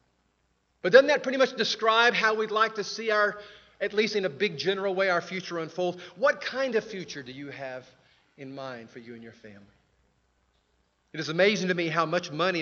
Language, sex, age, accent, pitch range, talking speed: English, male, 40-59, American, 145-195 Hz, 210 wpm